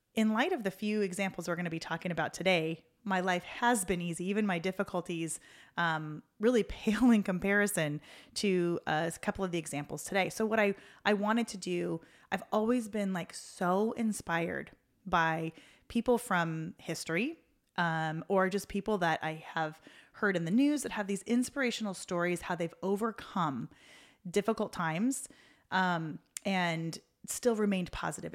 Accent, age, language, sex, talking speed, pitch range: American, 30-49, English, female, 165 wpm, 165-205 Hz